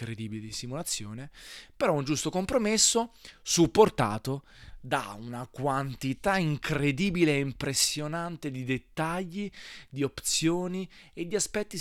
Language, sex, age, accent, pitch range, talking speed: Italian, male, 20-39, native, 120-150 Hz, 105 wpm